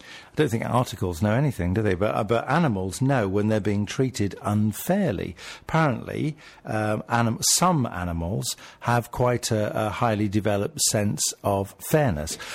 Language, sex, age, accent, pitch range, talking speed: English, male, 50-69, British, 95-120 Hz, 150 wpm